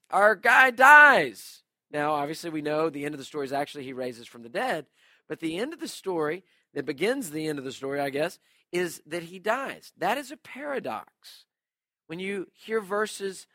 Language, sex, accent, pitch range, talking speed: English, male, American, 150-210 Hz, 205 wpm